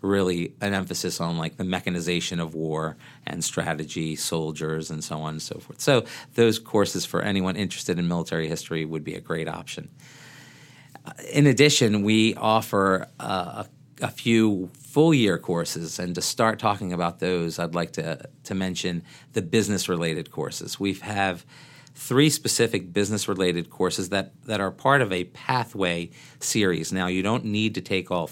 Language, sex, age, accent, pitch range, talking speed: English, male, 40-59, American, 90-115 Hz, 160 wpm